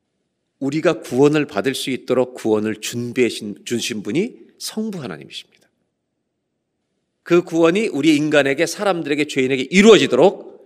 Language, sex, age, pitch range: Korean, male, 40-59, 130-200 Hz